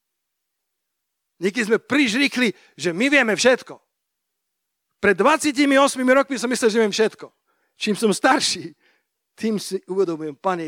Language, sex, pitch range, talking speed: Slovak, male, 155-220 Hz, 125 wpm